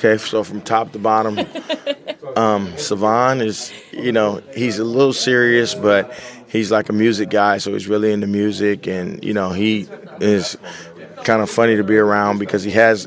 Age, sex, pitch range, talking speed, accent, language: 20-39, male, 105-115 Hz, 185 wpm, American, English